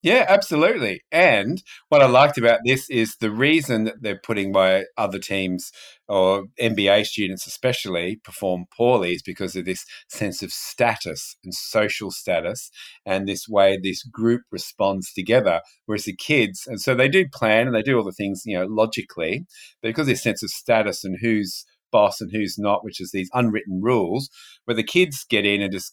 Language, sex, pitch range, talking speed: English, male, 95-120 Hz, 190 wpm